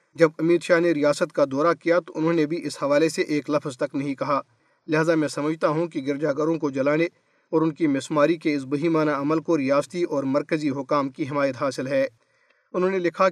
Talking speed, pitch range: 220 wpm, 145-180 Hz